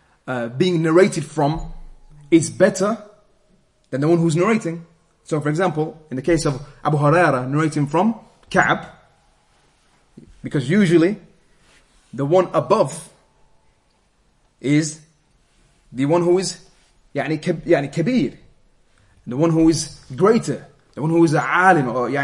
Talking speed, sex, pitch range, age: 125 wpm, male, 145-180 Hz, 30-49